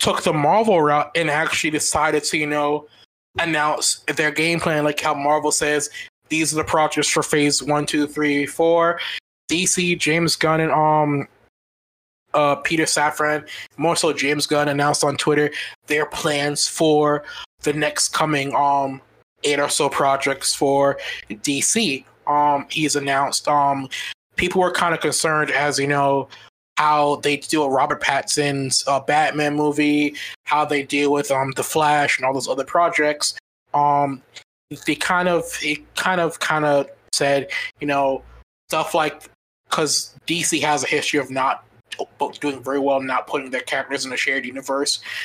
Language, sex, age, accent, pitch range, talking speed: English, male, 20-39, American, 140-155 Hz, 160 wpm